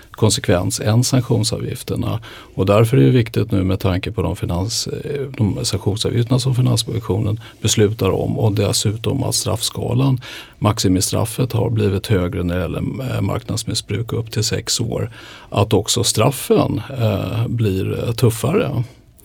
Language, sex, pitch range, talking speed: Swedish, male, 105-125 Hz, 130 wpm